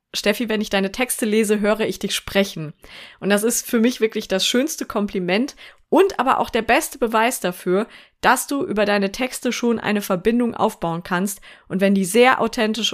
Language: German